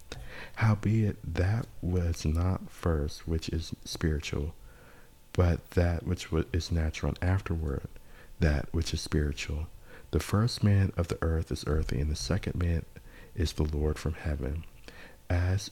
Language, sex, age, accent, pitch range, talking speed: English, male, 50-69, American, 75-95 Hz, 145 wpm